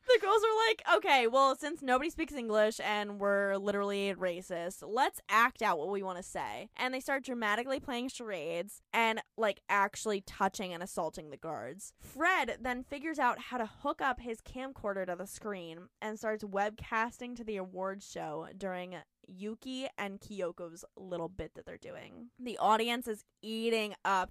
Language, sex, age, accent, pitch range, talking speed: English, female, 10-29, American, 200-280 Hz, 175 wpm